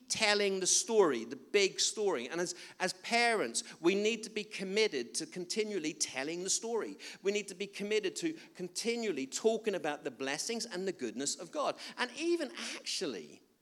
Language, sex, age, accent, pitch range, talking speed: English, male, 50-69, British, 140-210 Hz, 170 wpm